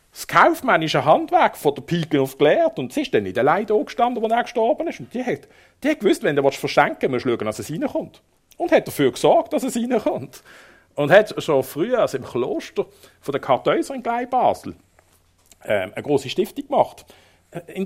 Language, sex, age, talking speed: German, male, 50-69, 200 wpm